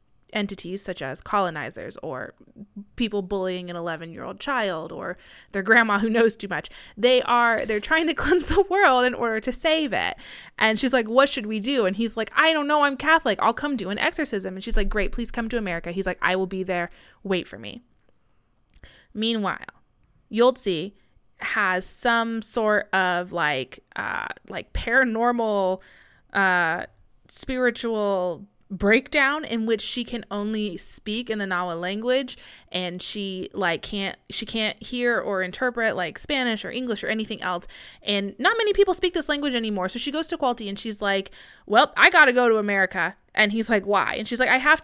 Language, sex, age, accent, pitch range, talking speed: English, female, 20-39, American, 195-255 Hz, 180 wpm